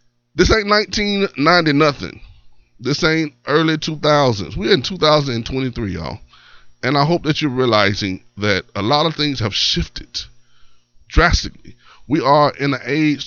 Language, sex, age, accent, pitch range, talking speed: English, male, 20-39, American, 110-145 Hz, 140 wpm